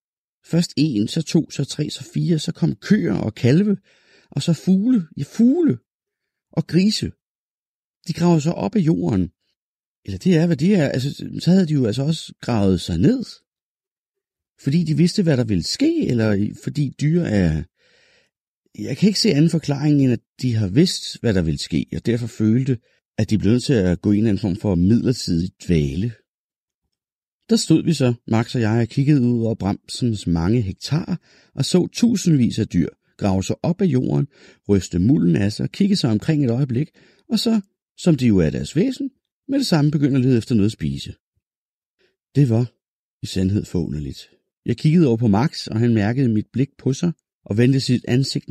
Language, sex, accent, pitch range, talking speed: Danish, male, native, 110-165 Hz, 195 wpm